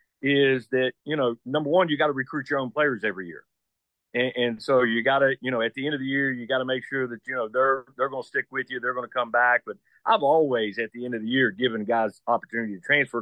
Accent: American